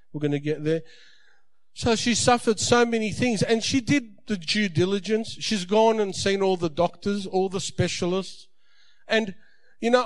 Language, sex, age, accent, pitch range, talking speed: English, male, 50-69, Australian, 185-235 Hz, 180 wpm